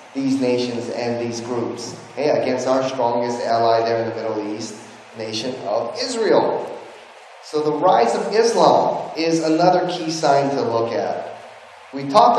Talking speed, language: 155 wpm, English